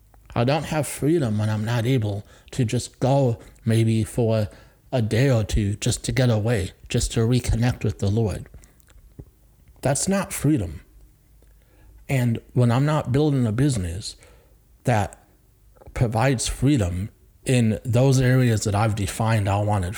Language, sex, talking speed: English, male, 145 wpm